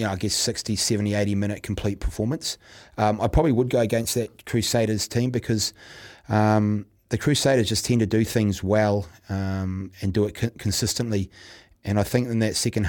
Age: 30-49